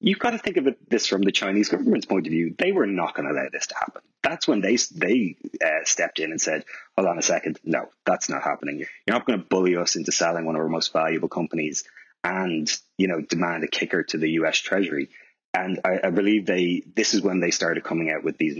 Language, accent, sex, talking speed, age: English, Irish, male, 245 wpm, 30-49